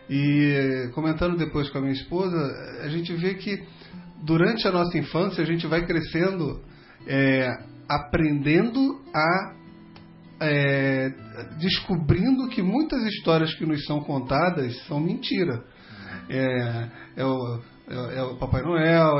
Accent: Brazilian